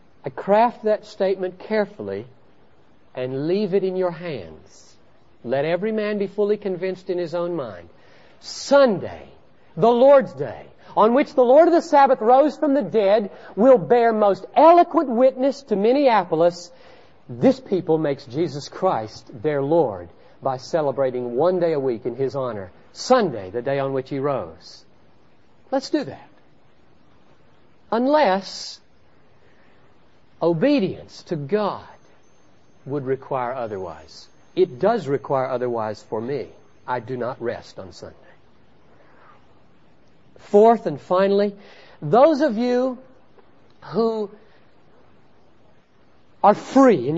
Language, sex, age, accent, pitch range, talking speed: English, male, 50-69, American, 160-250 Hz, 125 wpm